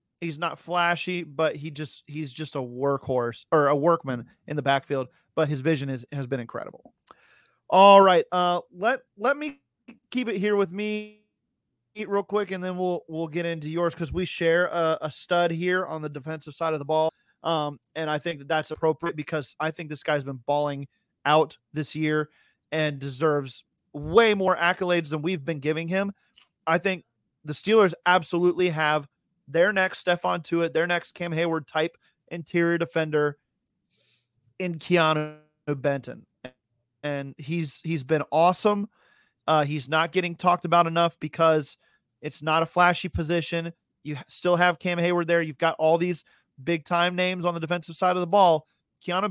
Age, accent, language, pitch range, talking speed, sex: 30-49, American, English, 150-180 Hz, 175 wpm, male